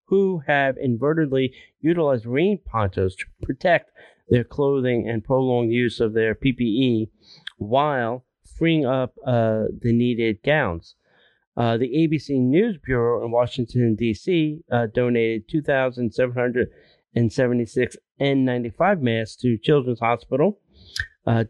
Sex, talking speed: male, 110 wpm